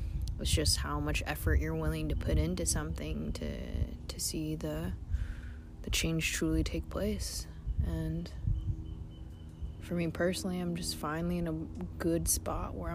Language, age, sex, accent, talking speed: English, 20-39, female, American, 150 wpm